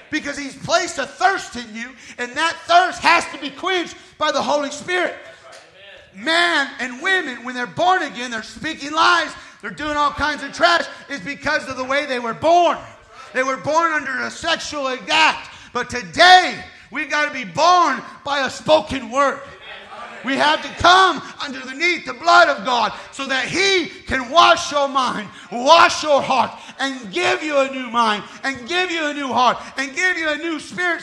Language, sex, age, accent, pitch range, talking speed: English, male, 40-59, American, 270-340 Hz, 190 wpm